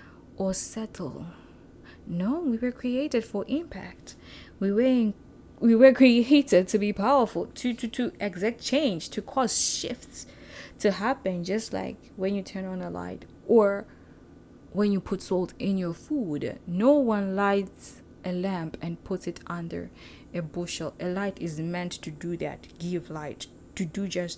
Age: 20-39